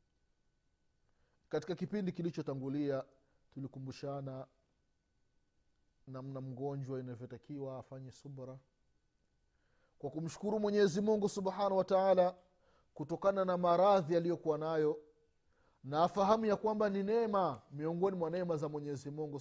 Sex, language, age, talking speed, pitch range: male, Swahili, 30-49, 100 wpm, 115-190 Hz